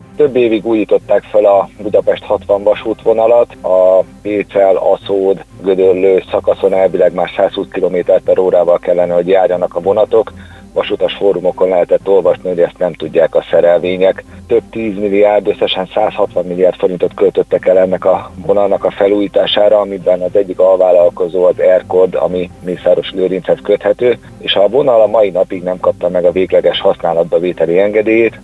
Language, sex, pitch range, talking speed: Hungarian, male, 90-125 Hz, 150 wpm